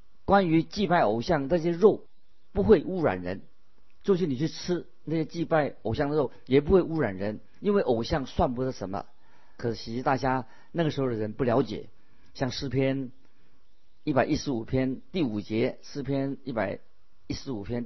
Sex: male